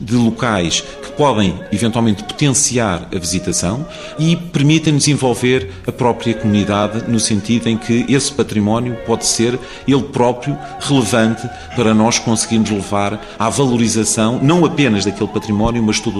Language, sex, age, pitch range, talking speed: Portuguese, male, 40-59, 100-130 Hz, 135 wpm